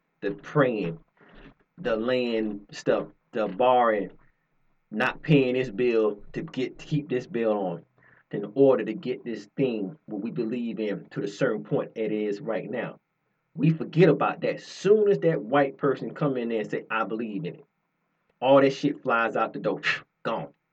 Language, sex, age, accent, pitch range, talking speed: English, male, 30-49, American, 125-155 Hz, 180 wpm